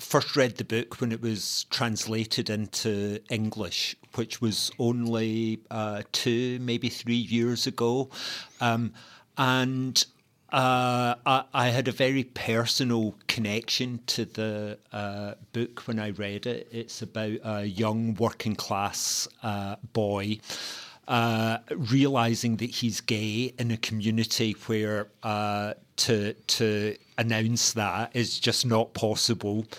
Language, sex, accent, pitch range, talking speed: English, male, British, 105-120 Hz, 125 wpm